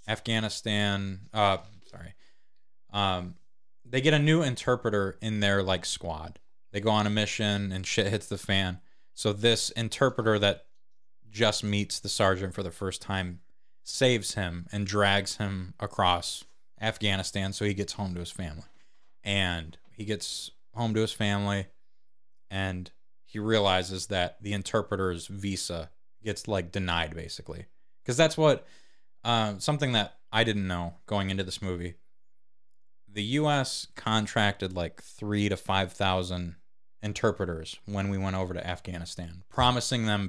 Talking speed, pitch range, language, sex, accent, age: 145 wpm, 90-110 Hz, English, male, American, 20-39